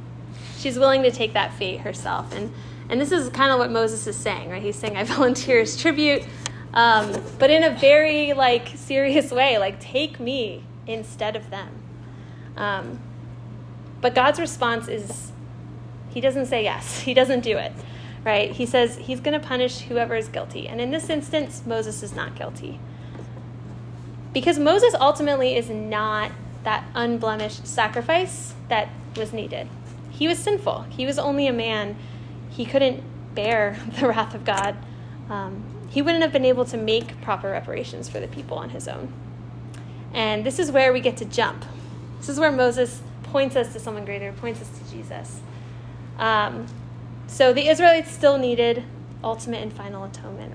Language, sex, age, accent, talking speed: English, female, 10-29, American, 165 wpm